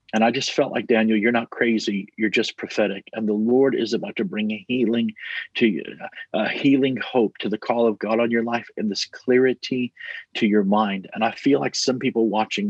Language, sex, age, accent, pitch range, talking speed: English, male, 40-59, American, 110-125 Hz, 230 wpm